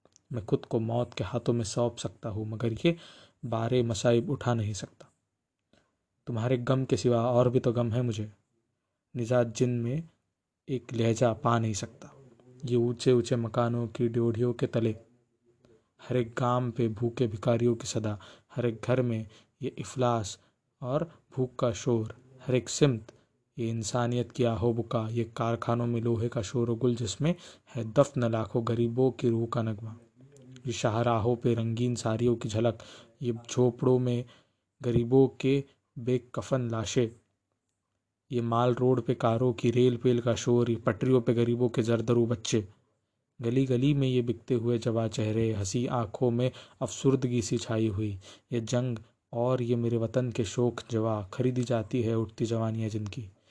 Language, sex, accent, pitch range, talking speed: Hindi, male, native, 115-125 Hz, 160 wpm